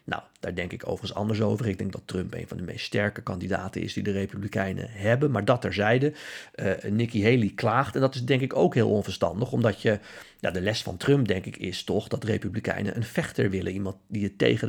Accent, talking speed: Dutch, 235 wpm